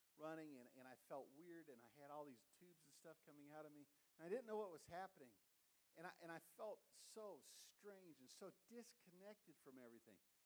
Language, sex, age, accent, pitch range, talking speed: English, male, 50-69, American, 130-180 Hz, 210 wpm